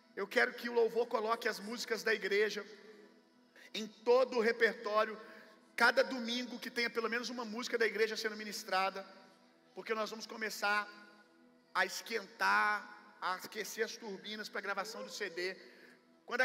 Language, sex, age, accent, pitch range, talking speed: Gujarati, male, 40-59, Brazilian, 205-235 Hz, 155 wpm